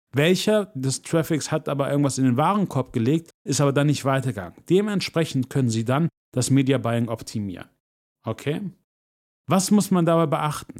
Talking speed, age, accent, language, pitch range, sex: 160 wpm, 40-59, German, German, 125-160 Hz, male